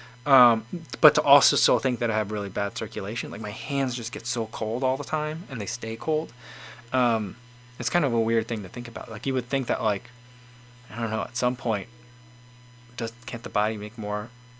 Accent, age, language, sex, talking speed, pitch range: American, 20-39, English, male, 220 wpm, 115-130 Hz